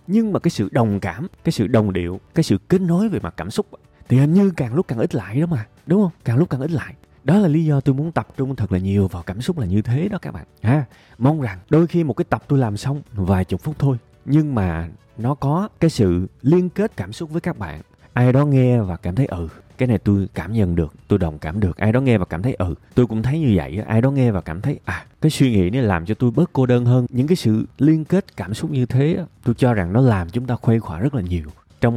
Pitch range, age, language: 95-135 Hz, 20-39, Vietnamese